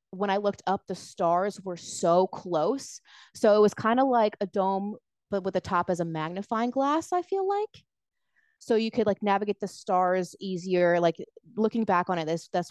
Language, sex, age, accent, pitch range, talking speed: English, female, 20-39, American, 165-200 Hz, 205 wpm